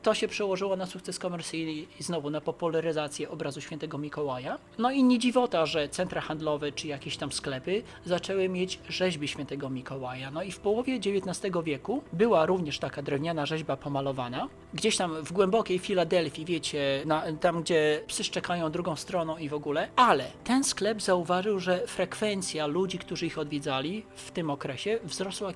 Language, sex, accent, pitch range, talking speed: Polish, male, native, 150-200 Hz, 165 wpm